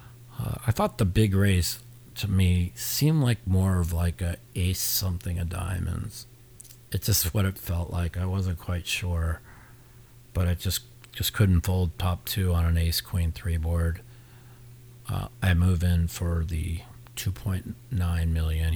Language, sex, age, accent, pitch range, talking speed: English, male, 40-59, American, 85-120 Hz, 165 wpm